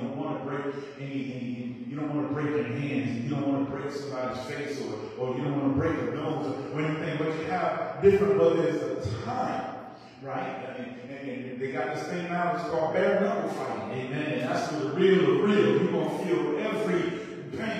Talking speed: 225 wpm